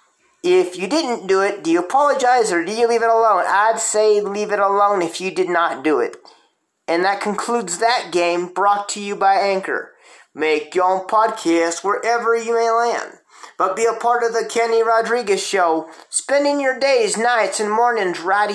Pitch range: 170-240 Hz